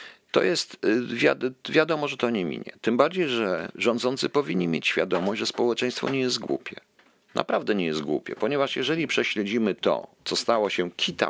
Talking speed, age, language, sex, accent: 165 wpm, 50-69, Polish, male, native